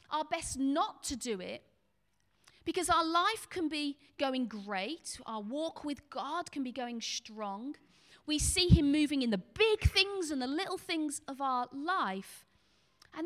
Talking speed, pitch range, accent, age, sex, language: 165 wpm, 245-330 Hz, British, 40-59, female, English